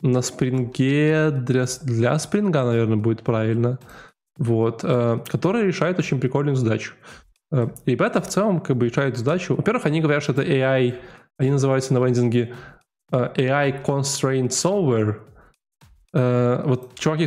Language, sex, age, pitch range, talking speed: Russian, male, 10-29, 120-150 Hz, 140 wpm